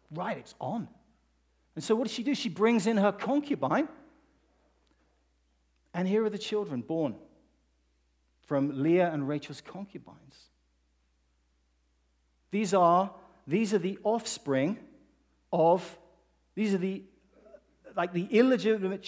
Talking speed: 120 wpm